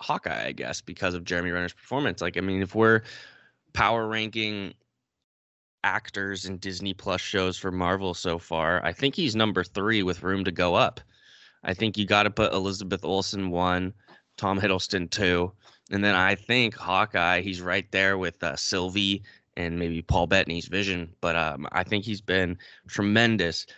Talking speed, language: 175 wpm, English